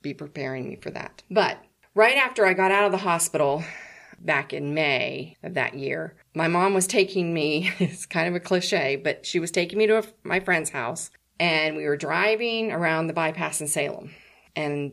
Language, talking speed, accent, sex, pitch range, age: English, 195 wpm, American, female, 145-185 Hz, 40-59